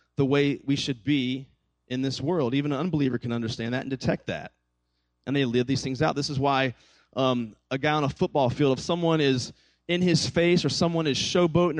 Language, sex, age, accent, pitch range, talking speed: English, male, 30-49, American, 115-155 Hz, 220 wpm